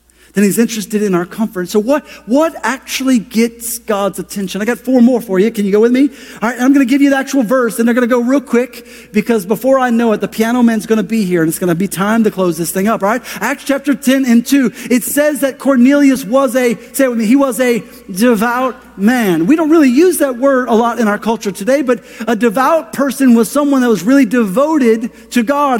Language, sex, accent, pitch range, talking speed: English, male, American, 215-260 Hz, 255 wpm